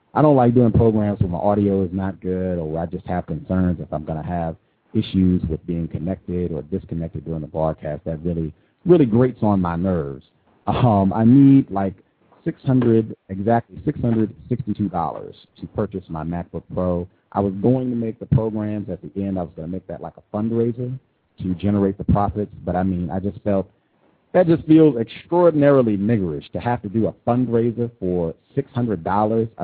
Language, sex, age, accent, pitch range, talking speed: English, male, 40-59, American, 95-130 Hz, 190 wpm